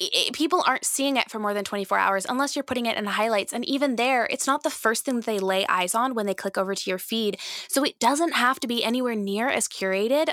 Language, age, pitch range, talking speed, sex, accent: English, 10-29, 195-245 Hz, 260 wpm, female, American